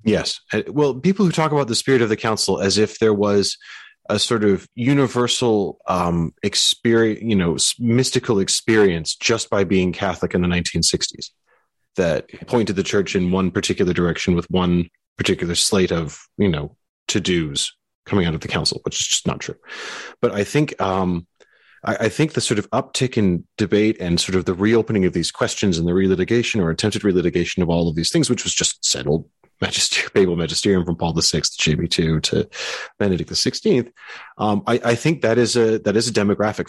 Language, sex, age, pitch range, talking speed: English, male, 30-49, 85-110 Hz, 195 wpm